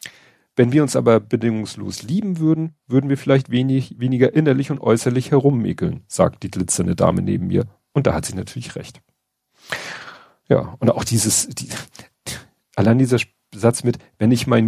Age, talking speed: 40-59, 165 wpm